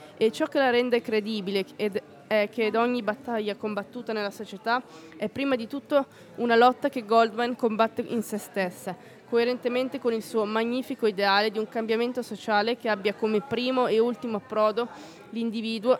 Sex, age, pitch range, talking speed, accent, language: female, 20-39, 210-240 Hz, 160 wpm, native, Italian